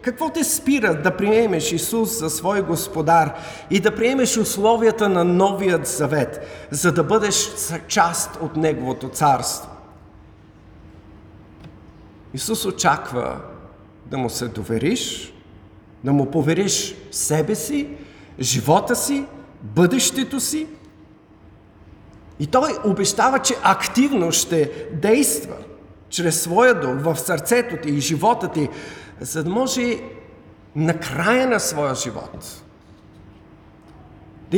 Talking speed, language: 110 wpm, Bulgarian